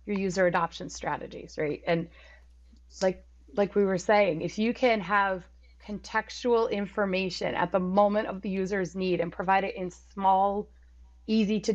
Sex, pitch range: female, 175-215 Hz